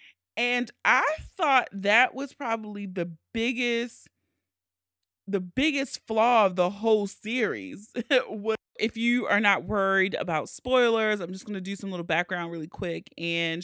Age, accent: 30-49, American